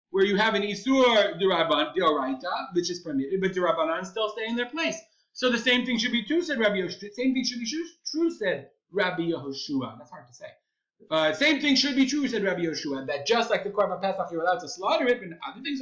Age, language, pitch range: 30-49, English, 180-285 Hz